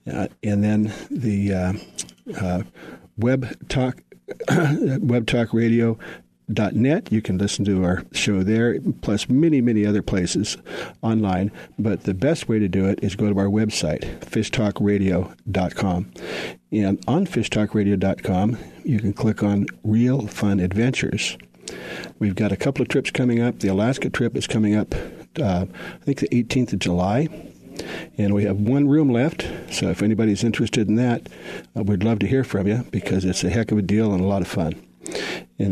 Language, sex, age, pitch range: English, male, 50-69, 95-120 Hz